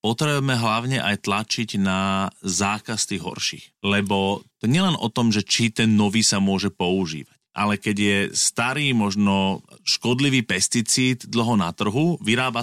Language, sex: Slovak, male